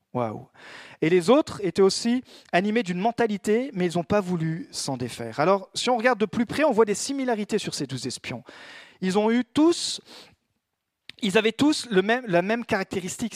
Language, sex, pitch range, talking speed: French, male, 165-230 Hz, 195 wpm